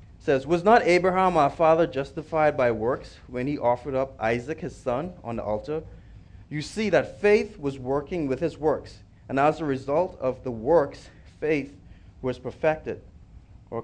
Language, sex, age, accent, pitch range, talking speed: English, male, 30-49, American, 95-155 Hz, 170 wpm